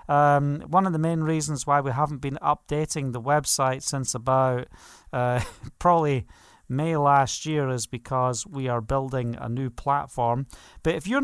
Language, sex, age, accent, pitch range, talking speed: English, male, 40-59, British, 130-165 Hz, 165 wpm